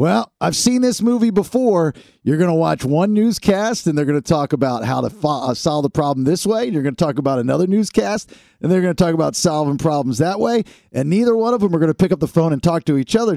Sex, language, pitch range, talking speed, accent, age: male, English, 125-185 Hz, 270 wpm, American, 50-69